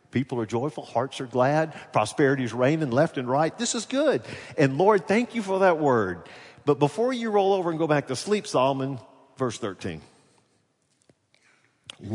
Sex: male